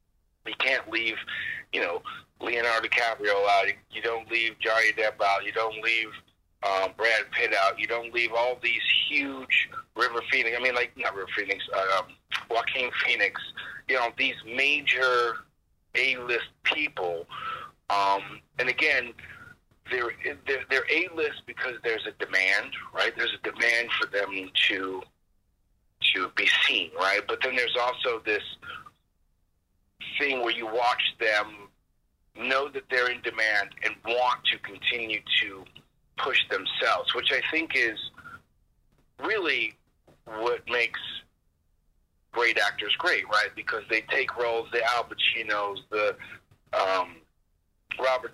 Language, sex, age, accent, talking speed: English, male, 40-59, American, 135 wpm